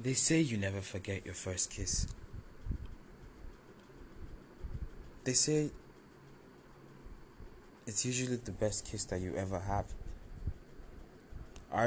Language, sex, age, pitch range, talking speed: English, male, 20-39, 85-105 Hz, 100 wpm